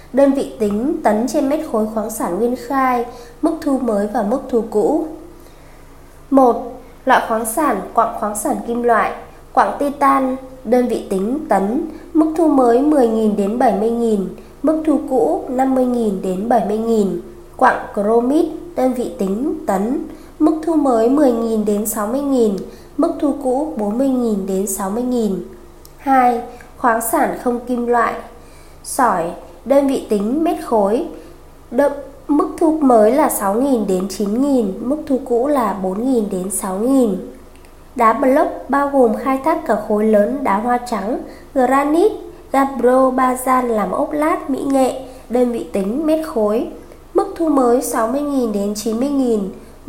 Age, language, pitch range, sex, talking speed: 20-39, Vietnamese, 220-280 Hz, female, 145 wpm